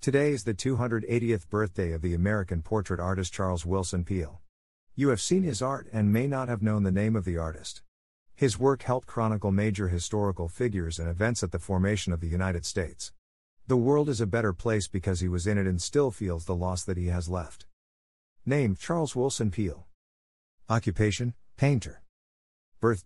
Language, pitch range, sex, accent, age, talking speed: English, 85-115 Hz, male, American, 50-69, 185 wpm